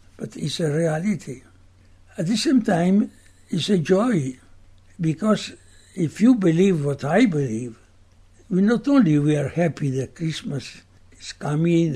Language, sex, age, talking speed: English, male, 60-79, 145 wpm